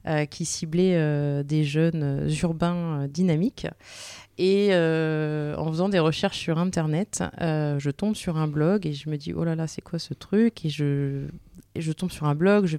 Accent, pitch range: French, 150-180 Hz